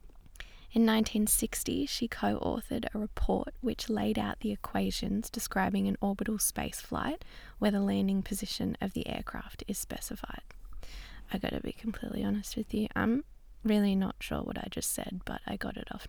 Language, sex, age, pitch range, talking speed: English, female, 10-29, 205-245 Hz, 175 wpm